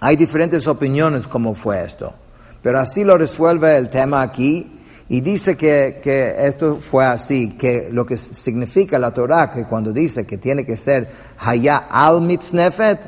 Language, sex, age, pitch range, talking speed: English, male, 50-69, 120-155 Hz, 160 wpm